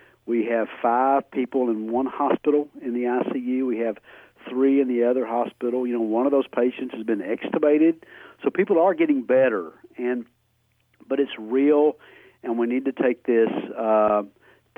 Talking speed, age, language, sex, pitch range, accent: 170 wpm, 50-69, English, male, 115-140 Hz, American